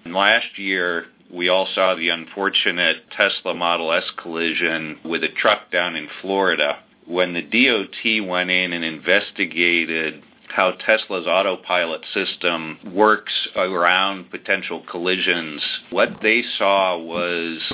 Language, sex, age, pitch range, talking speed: English, male, 40-59, 80-90 Hz, 120 wpm